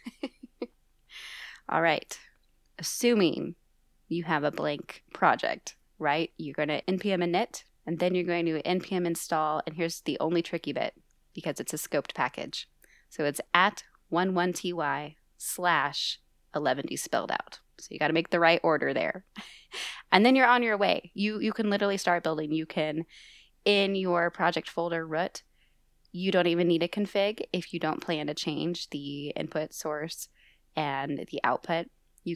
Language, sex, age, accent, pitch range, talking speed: English, female, 20-39, American, 155-185 Hz, 160 wpm